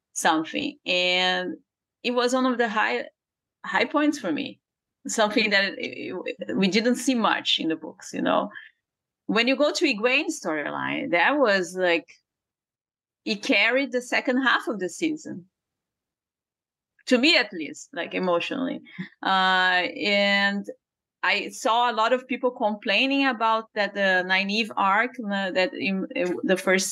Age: 30-49